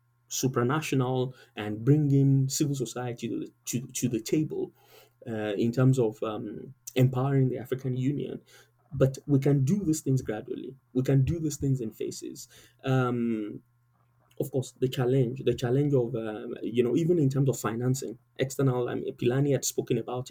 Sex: male